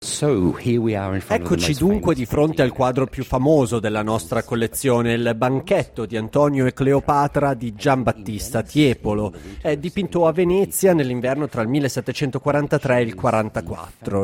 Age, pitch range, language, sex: 30-49, 130-180 Hz, Italian, male